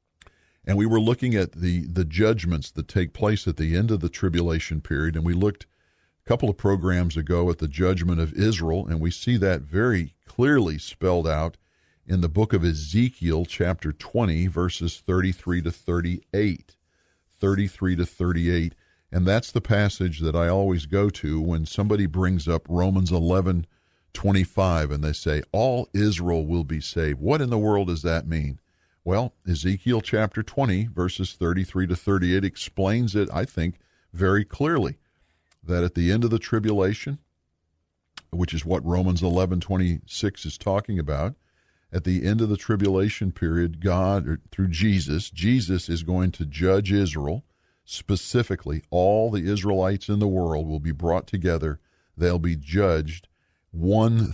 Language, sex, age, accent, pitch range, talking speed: English, male, 50-69, American, 80-100 Hz, 160 wpm